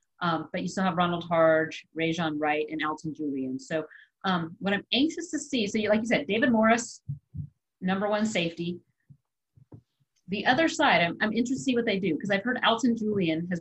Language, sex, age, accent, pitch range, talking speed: English, female, 40-59, American, 165-215 Hz, 205 wpm